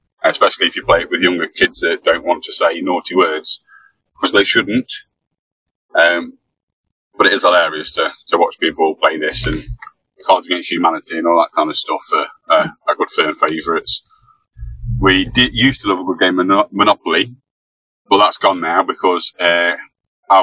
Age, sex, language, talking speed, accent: 20-39, male, English, 180 wpm, British